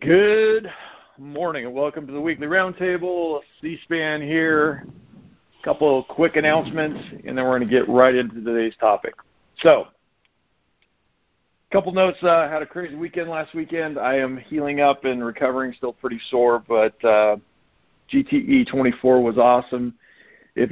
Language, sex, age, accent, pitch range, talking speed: English, male, 50-69, American, 115-145 Hz, 150 wpm